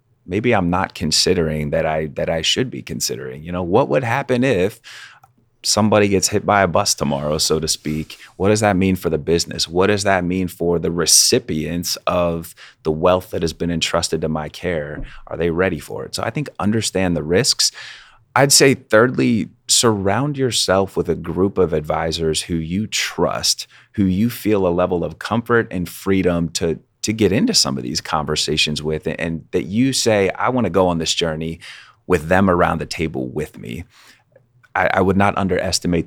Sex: male